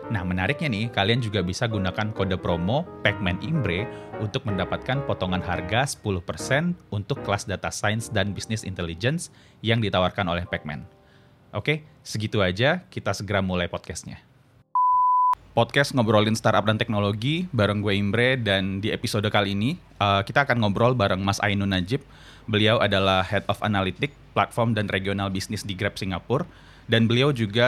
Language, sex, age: Indonesian, male, 30-49